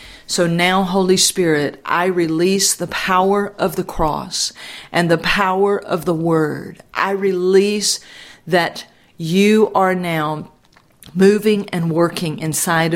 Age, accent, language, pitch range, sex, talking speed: 40-59, American, English, 160-195 Hz, female, 125 wpm